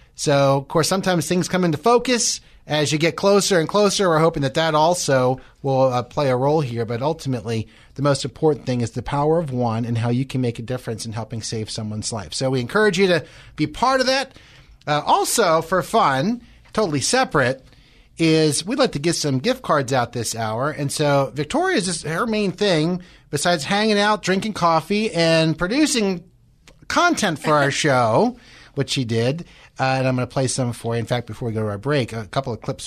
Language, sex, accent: English, male, American